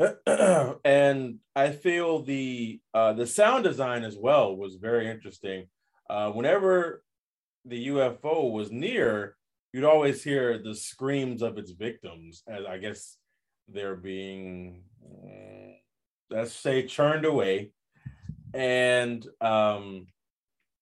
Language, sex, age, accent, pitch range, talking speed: English, male, 20-39, American, 100-135 Hz, 110 wpm